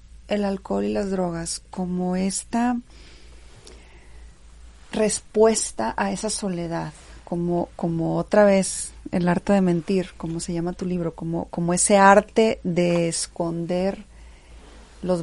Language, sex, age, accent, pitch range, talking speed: Spanish, female, 40-59, Mexican, 160-200 Hz, 120 wpm